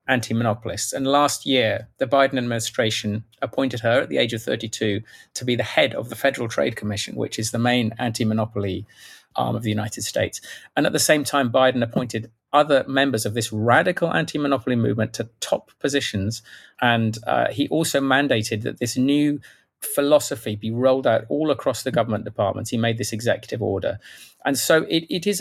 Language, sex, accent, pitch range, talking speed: English, male, British, 110-135 Hz, 180 wpm